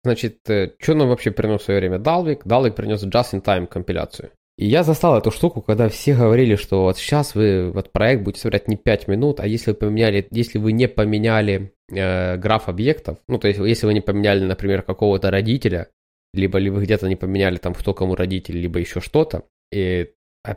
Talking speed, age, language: 190 wpm, 20-39, Ukrainian